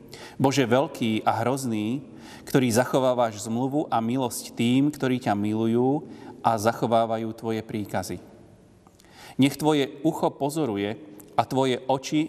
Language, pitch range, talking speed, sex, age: Slovak, 110-130 Hz, 115 wpm, male, 30-49